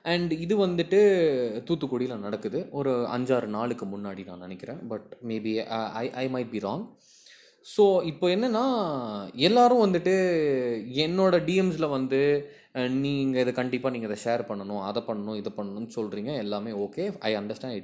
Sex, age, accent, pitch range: male, 20-39, native, 110-160 Hz